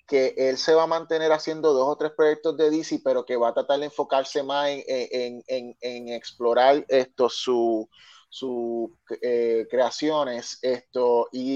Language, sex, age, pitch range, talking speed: Spanish, male, 30-49, 130-165 Hz, 170 wpm